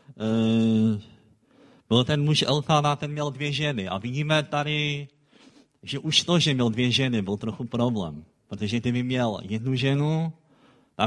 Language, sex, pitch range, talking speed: Czech, male, 110-150 Hz, 150 wpm